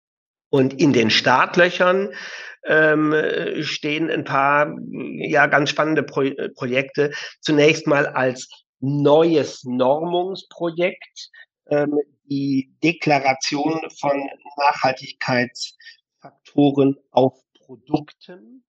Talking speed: 80 wpm